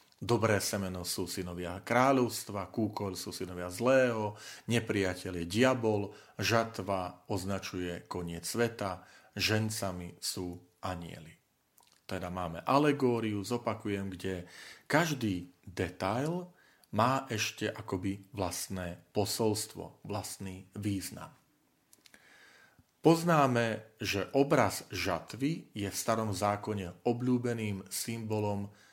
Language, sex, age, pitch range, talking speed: Slovak, male, 40-59, 95-115 Hz, 90 wpm